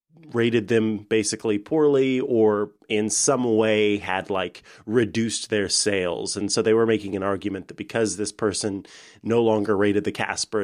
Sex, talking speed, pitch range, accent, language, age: male, 165 wpm, 100-120 Hz, American, English, 30-49